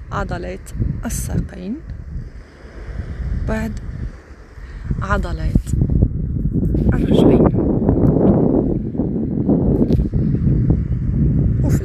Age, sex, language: 40-59, female, Arabic